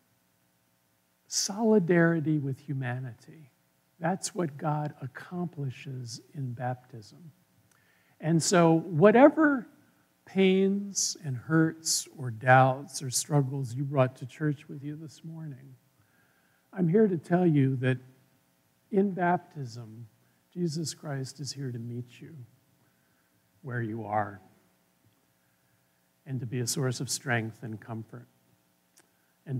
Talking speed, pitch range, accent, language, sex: 110 wpm, 115-160 Hz, American, English, male